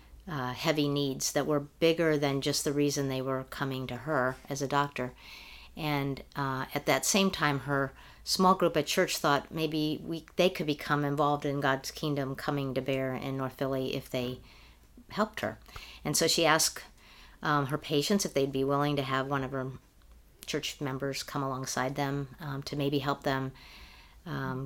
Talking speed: 185 wpm